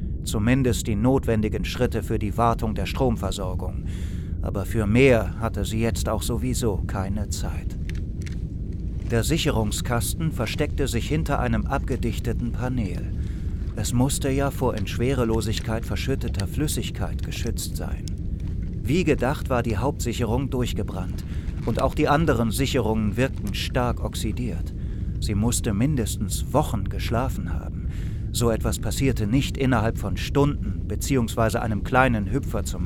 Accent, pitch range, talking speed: German, 90-125 Hz, 125 wpm